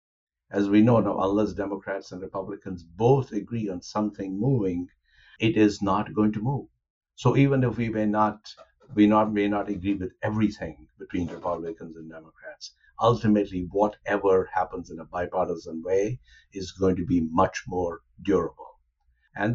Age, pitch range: 60-79, 95-115 Hz